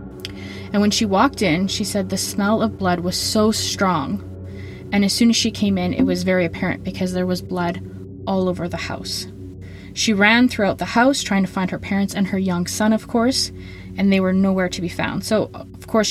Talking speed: 220 wpm